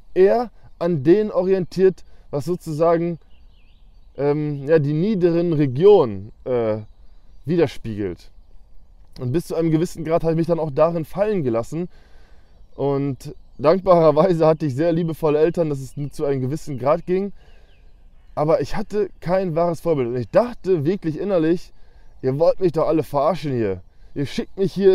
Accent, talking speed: German, 155 wpm